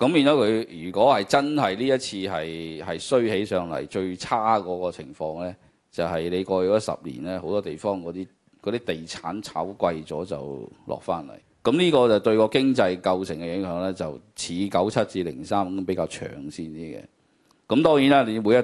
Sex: male